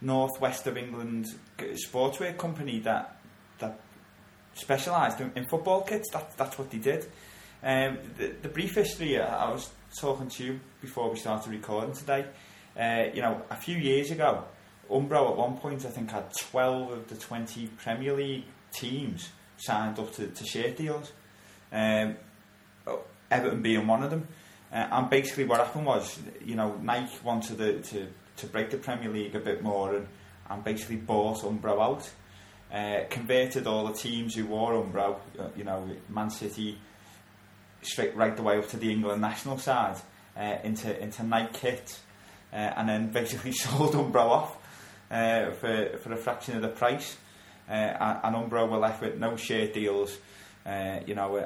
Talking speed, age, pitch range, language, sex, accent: 170 wpm, 20-39, 105-130 Hz, English, male, British